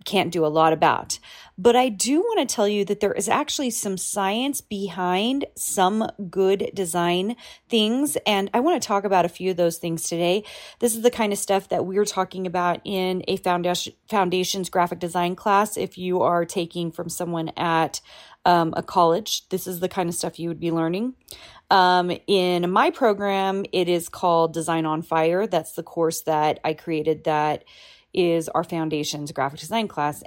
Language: English